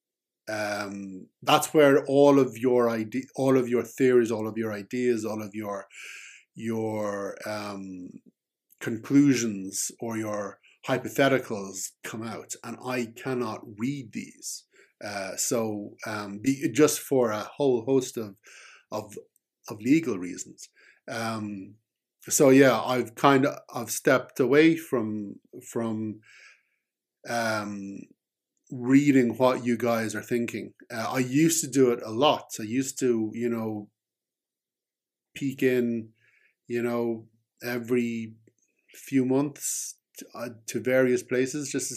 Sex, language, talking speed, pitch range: male, English, 125 wpm, 105-130 Hz